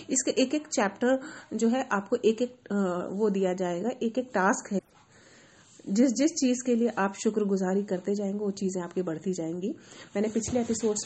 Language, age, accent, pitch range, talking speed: Hindi, 30-49, native, 190-230 Hz, 180 wpm